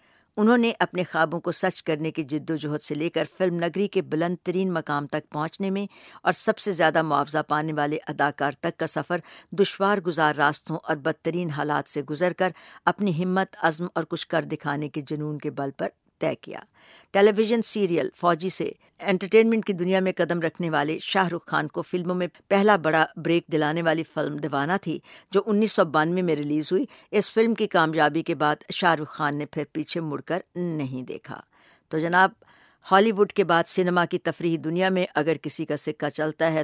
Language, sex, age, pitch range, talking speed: English, female, 60-79, 155-185 Hz, 175 wpm